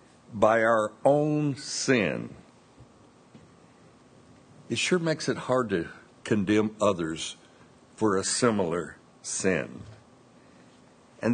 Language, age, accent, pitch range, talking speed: English, 60-79, American, 110-160 Hz, 90 wpm